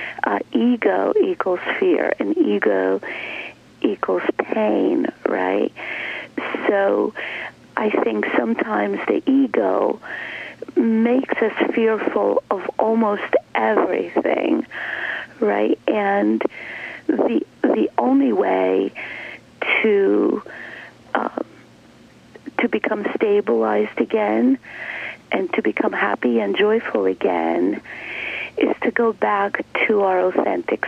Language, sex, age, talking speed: English, female, 40-59, 90 wpm